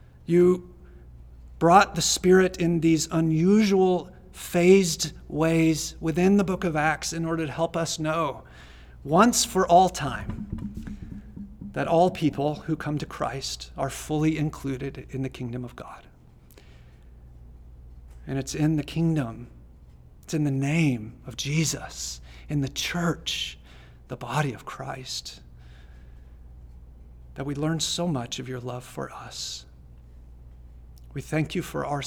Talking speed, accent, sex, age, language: 135 wpm, American, male, 40-59, English